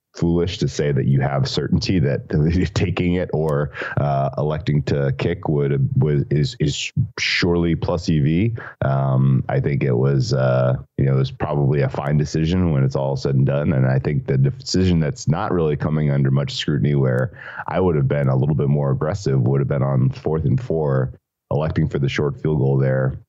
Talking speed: 200 wpm